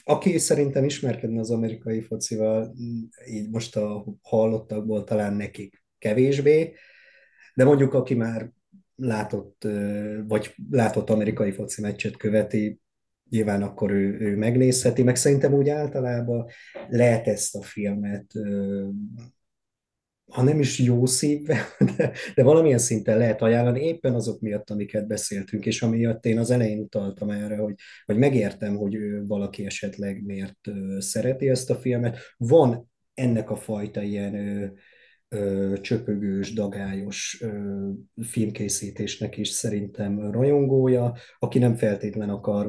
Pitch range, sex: 100-120 Hz, male